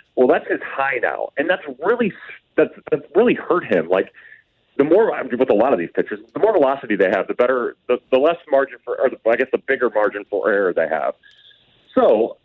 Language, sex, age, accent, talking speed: English, male, 30-49, American, 220 wpm